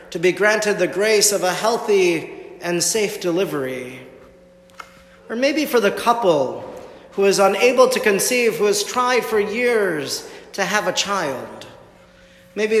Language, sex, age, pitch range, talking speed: English, male, 40-59, 175-220 Hz, 145 wpm